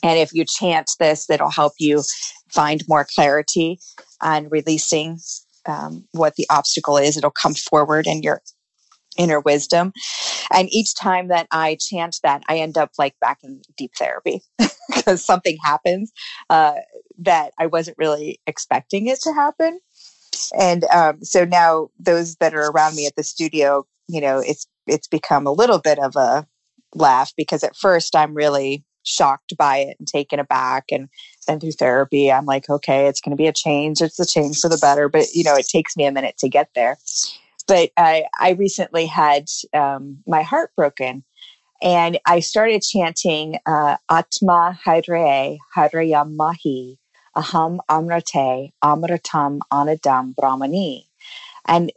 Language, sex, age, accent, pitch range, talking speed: English, female, 30-49, American, 145-175 Hz, 160 wpm